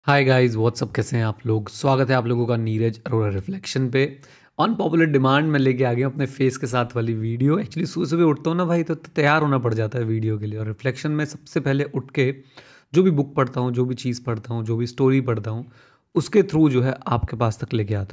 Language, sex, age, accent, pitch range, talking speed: Hindi, male, 30-49, native, 115-140 Hz, 250 wpm